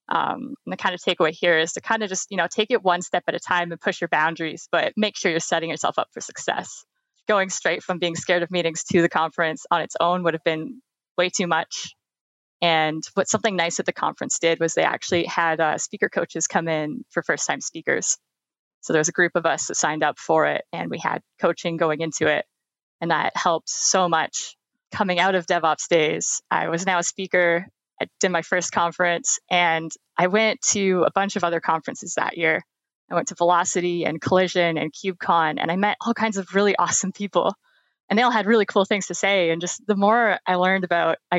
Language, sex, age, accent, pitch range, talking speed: English, female, 20-39, American, 170-205 Hz, 230 wpm